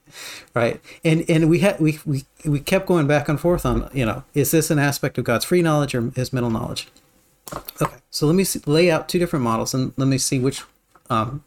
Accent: American